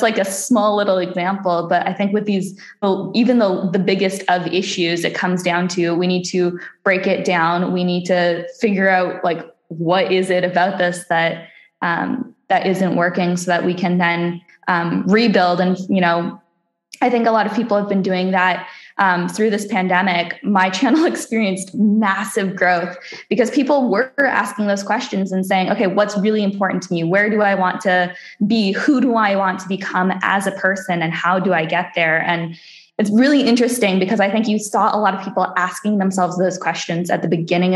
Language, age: English, 10-29